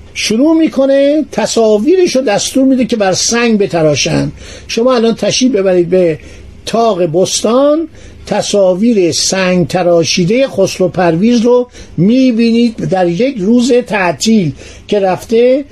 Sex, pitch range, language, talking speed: male, 180-245 Hz, Persian, 120 wpm